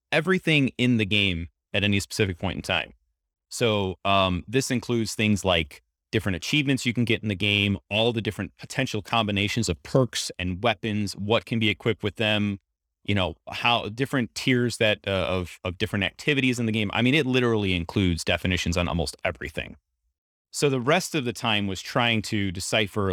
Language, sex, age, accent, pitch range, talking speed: English, male, 30-49, American, 90-120 Hz, 185 wpm